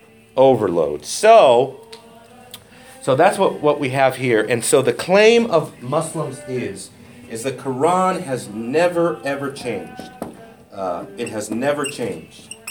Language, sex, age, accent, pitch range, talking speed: English, male, 40-59, American, 115-170 Hz, 130 wpm